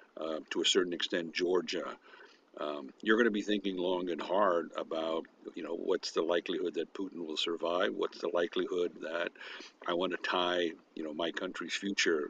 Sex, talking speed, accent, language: male, 185 wpm, American, English